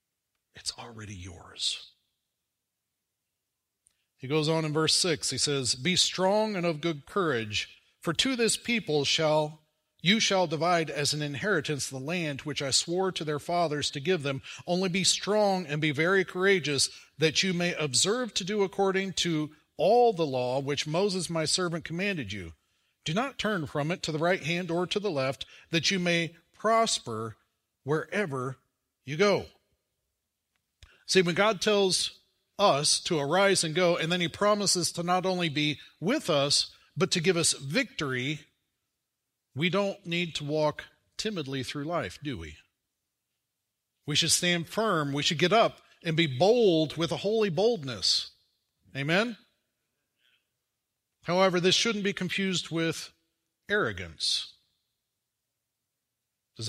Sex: male